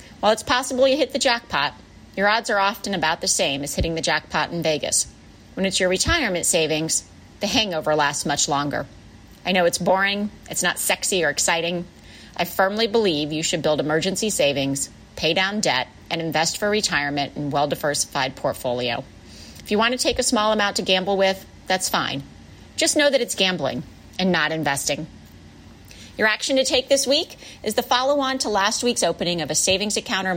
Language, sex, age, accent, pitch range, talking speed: English, female, 40-59, American, 145-225 Hz, 190 wpm